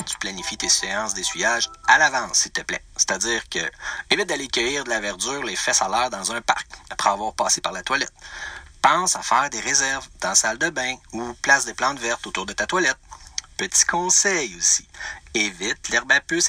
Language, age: French, 40-59